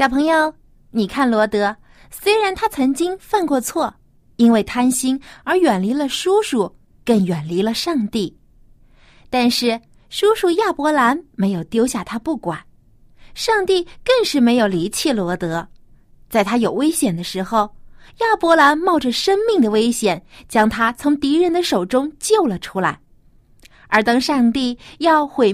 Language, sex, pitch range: Chinese, female, 200-315 Hz